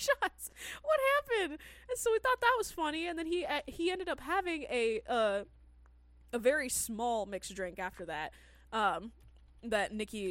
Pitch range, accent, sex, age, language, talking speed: 205-265 Hz, American, female, 10-29, English, 175 wpm